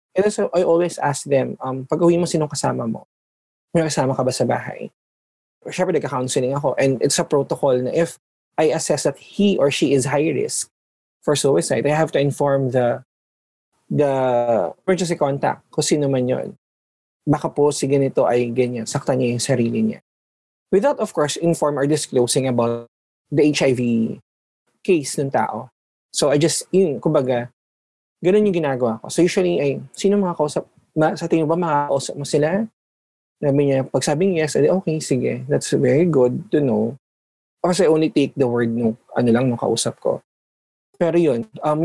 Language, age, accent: Filipino, 20-39, native